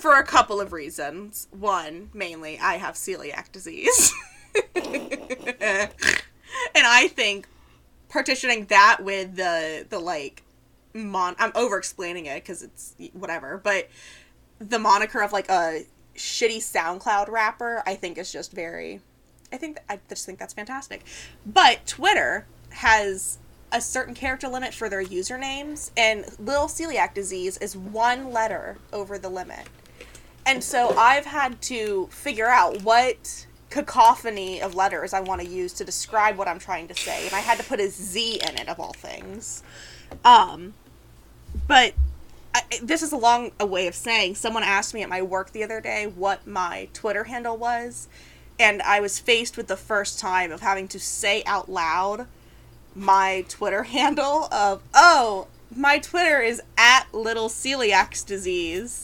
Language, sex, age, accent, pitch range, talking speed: English, female, 20-39, American, 195-265 Hz, 155 wpm